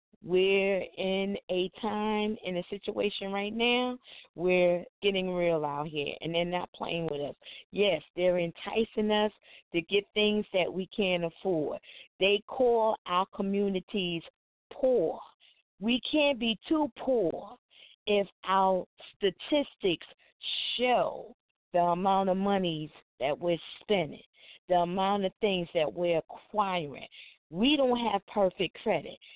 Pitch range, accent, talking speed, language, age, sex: 185-245 Hz, American, 130 wpm, English, 40-59, female